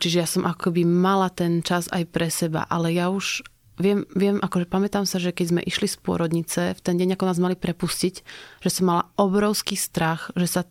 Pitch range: 170-190 Hz